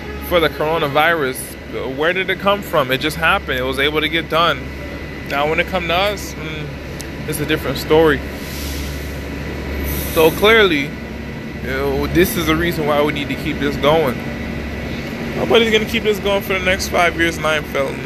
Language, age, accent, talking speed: English, 20-39, American, 185 wpm